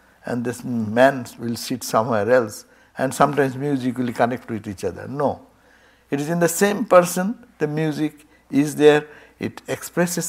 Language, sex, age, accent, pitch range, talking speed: English, male, 60-79, Indian, 125-175 Hz, 165 wpm